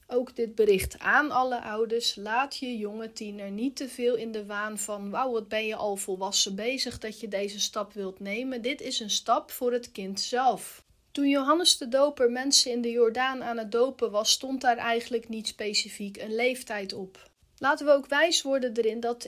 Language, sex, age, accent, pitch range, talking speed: Dutch, female, 30-49, Dutch, 215-260 Hz, 200 wpm